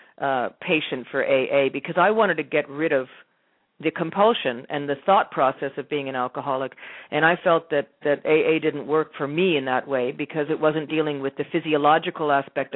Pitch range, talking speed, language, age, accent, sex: 140-165 Hz, 200 wpm, English, 40-59, American, female